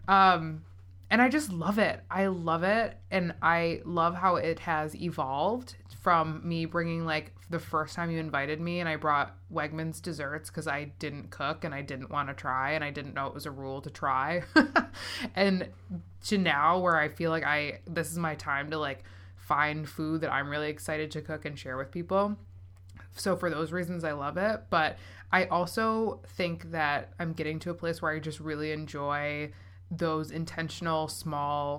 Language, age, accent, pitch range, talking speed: English, 20-39, American, 145-170 Hz, 195 wpm